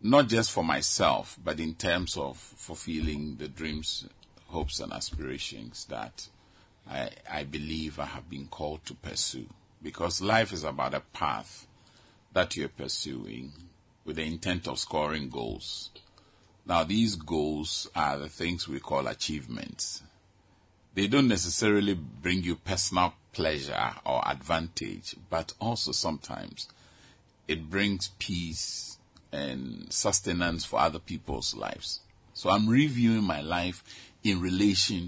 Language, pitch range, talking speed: English, 80-100 Hz, 130 wpm